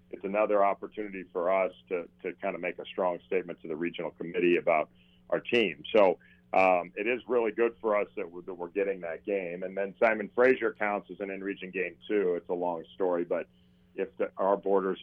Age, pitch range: 40-59, 90-110 Hz